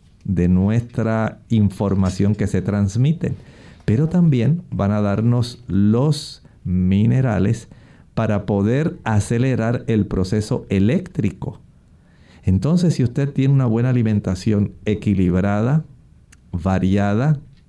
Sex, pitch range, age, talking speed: male, 95-125 Hz, 50-69, 95 wpm